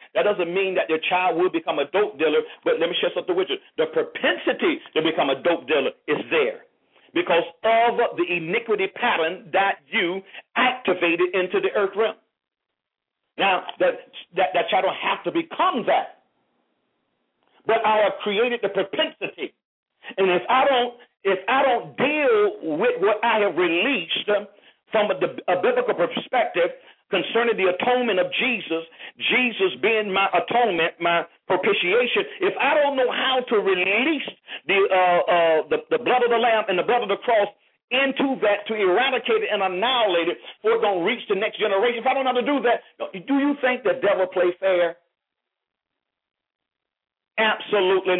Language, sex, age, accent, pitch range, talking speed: English, male, 50-69, American, 190-280 Hz, 170 wpm